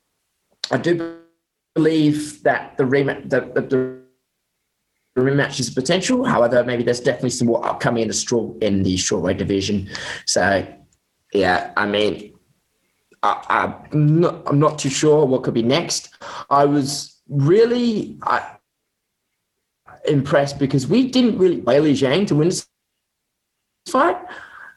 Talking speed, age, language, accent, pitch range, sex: 135 wpm, 20-39, English, British, 125-150 Hz, male